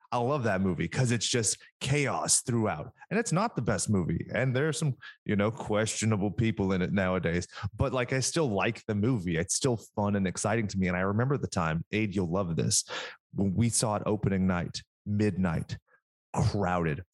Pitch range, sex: 100-135 Hz, male